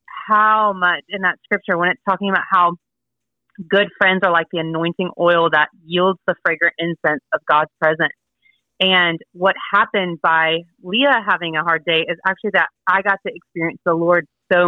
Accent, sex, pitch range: American, female, 170-205 Hz